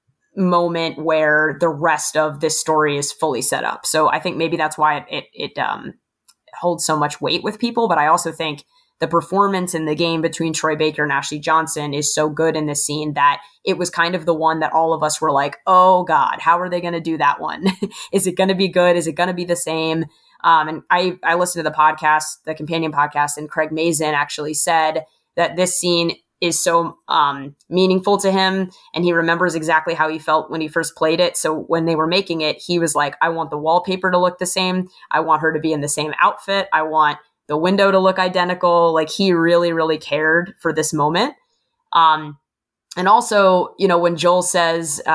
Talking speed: 225 wpm